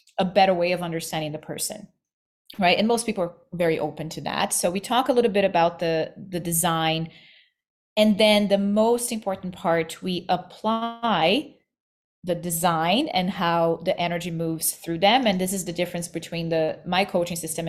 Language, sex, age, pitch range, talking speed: English, female, 30-49, 170-215 Hz, 180 wpm